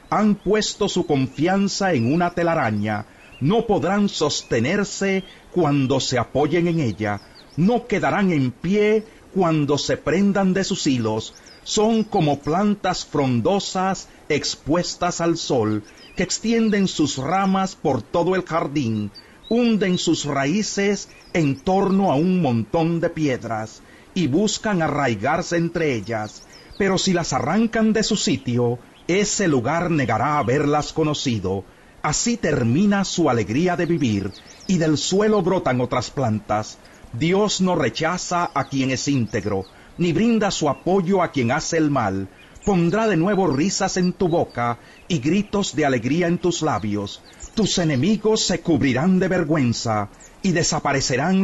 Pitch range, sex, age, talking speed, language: 130-190 Hz, male, 40-59, 135 wpm, Spanish